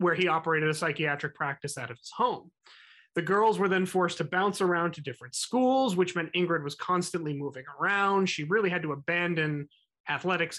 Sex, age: male, 30-49